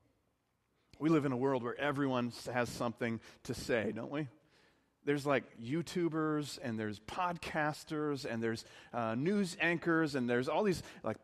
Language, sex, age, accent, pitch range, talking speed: English, male, 40-59, American, 130-175 Hz, 155 wpm